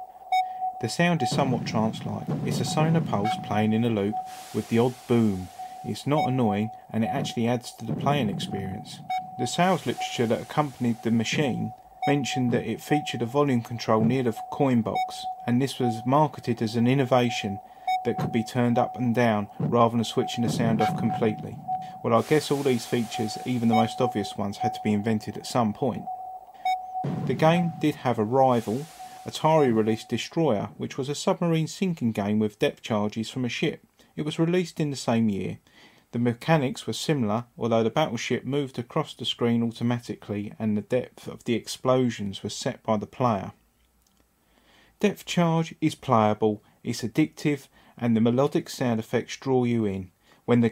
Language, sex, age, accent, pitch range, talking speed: English, male, 40-59, British, 115-155 Hz, 180 wpm